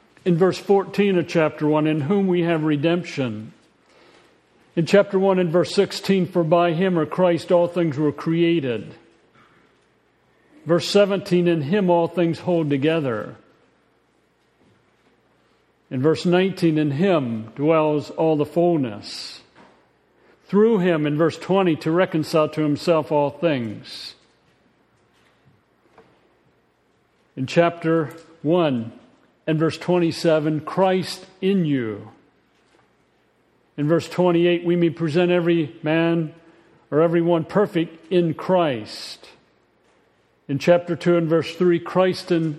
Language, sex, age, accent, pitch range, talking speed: English, male, 50-69, American, 150-180 Hz, 120 wpm